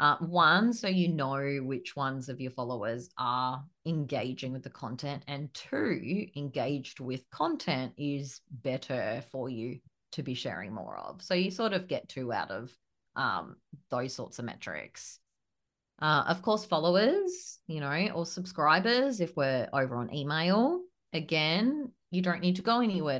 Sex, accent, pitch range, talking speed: female, Australian, 135-190 Hz, 160 wpm